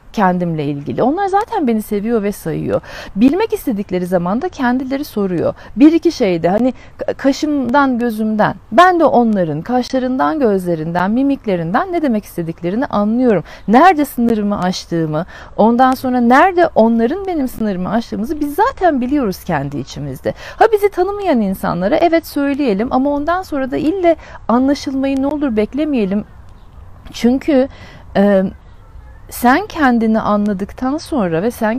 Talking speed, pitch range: 125 wpm, 185-285 Hz